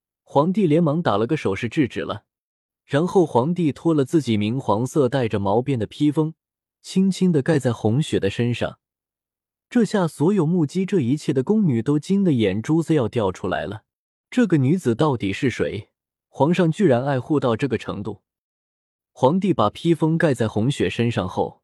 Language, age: Chinese, 20-39